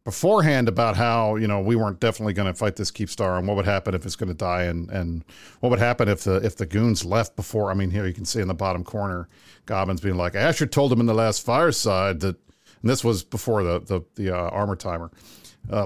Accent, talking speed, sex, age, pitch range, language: American, 255 wpm, male, 50-69, 95-115 Hz, English